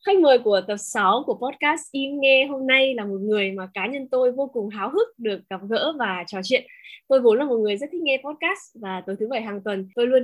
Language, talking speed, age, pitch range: Vietnamese, 265 wpm, 10-29, 205-275 Hz